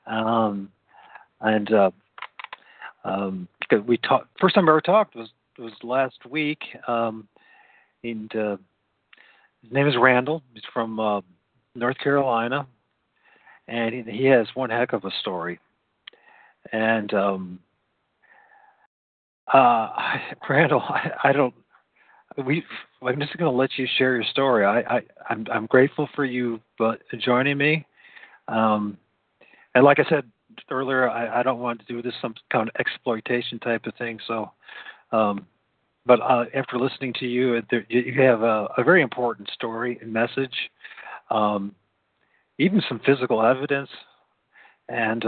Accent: American